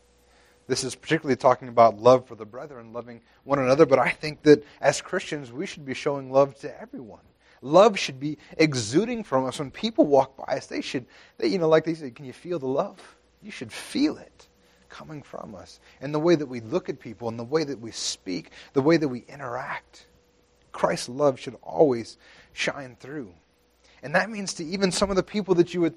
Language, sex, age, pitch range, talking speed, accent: English, male, 30-49, 125-170 Hz, 215 wpm, American